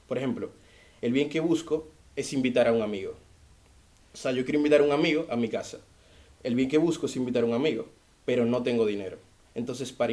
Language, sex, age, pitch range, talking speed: Spanish, male, 20-39, 115-145 Hz, 220 wpm